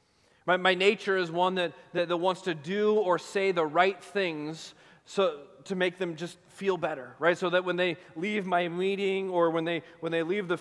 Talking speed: 215 wpm